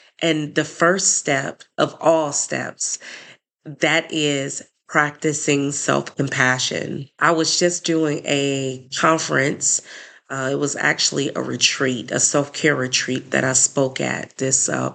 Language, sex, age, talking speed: English, female, 30-49, 130 wpm